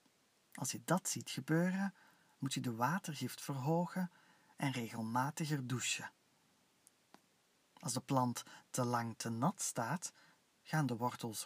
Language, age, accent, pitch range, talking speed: Dutch, 40-59, Dutch, 120-165 Hz, 125 wpm